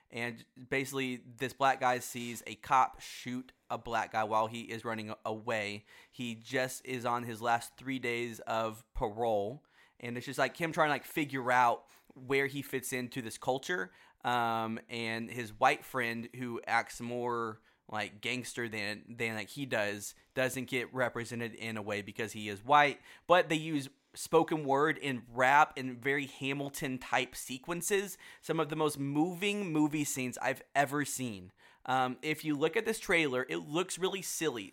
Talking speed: 175 wpm